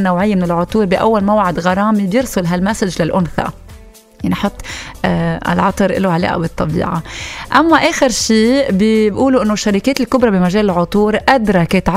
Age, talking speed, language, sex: 30-49, 120 wpm, English, female